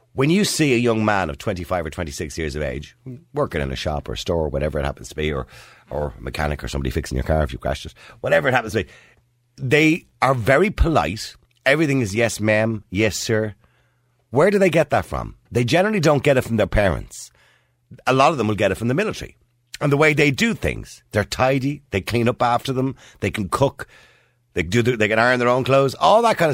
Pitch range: 80-130 Hz